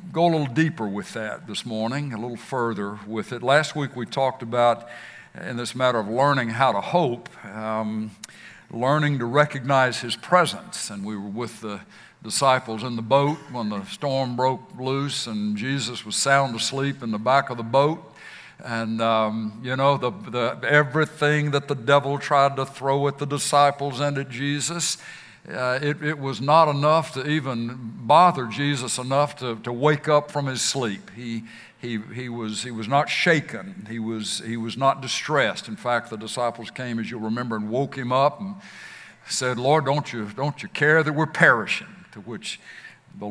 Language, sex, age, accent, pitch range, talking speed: English, male, 60-79, American, 115-145 Hz, 185 wpm